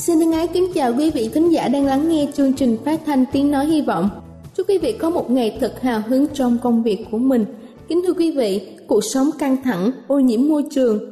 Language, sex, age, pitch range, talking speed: Vietnamese, female, 20-39, 230-295 Hz, 245 wpm